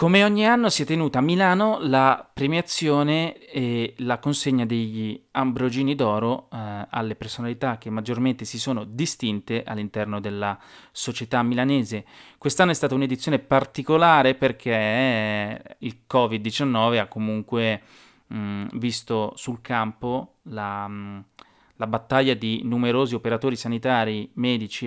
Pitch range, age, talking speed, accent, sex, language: 110-130 Hz, 30-49, 115 wpm, native, male, Italian